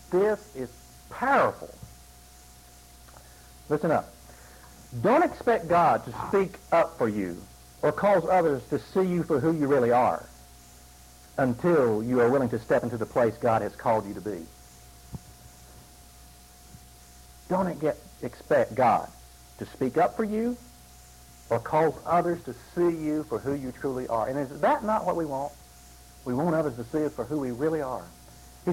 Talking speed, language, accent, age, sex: 160 wpm, English, American, 50-69, male